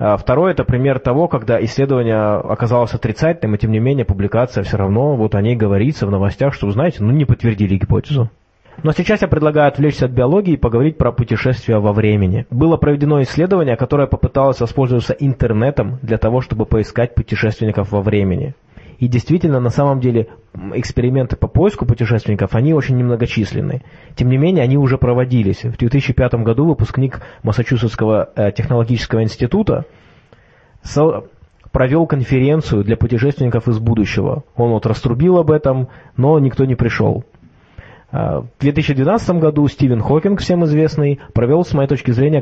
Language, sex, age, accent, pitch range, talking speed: Russian, male, 20-39, native, 110-140 Hz, 150 wpm